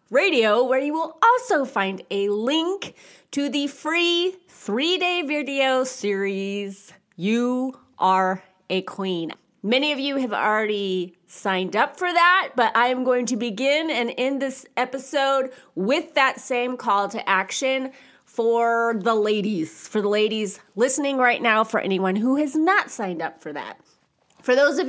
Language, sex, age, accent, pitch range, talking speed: English, female, 30-49, American, 190-270 Hz, 155 wpm